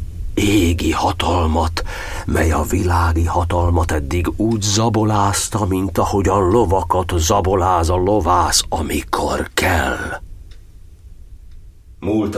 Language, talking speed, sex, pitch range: Hungarian, 90 wpm, male, 90-115 Hz